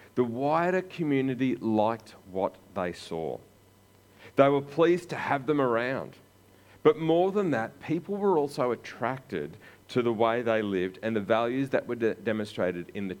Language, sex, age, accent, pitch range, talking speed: English, male, 40-59, Australian, 95-125 Hz, 160 wpm